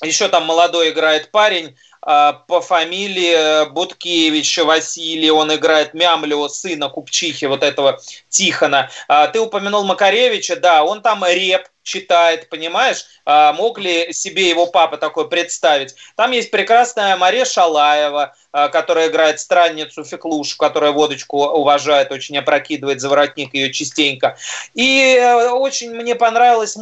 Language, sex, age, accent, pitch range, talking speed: Russian, male, 20-39, native, 150-185 Hz, 125 wpm